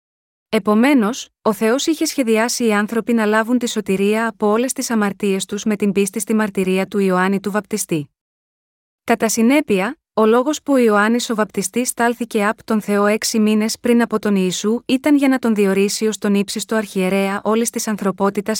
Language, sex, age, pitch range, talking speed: Greek, female, 20-39, 200-240 Hz, 175 wpm